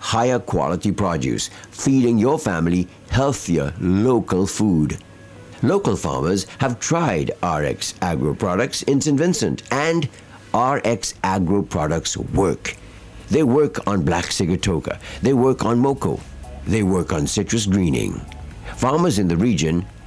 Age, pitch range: 60-79, 90-125 Hz